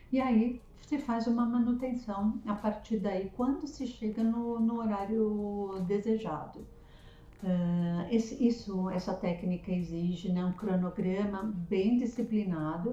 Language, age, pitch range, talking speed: Portuguese, 50-69, 190-235 Hz, 125 wpm